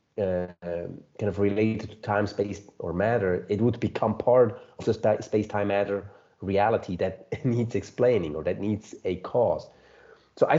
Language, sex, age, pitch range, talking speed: English, male, 30-49, 95-115 Hz, 160 wpm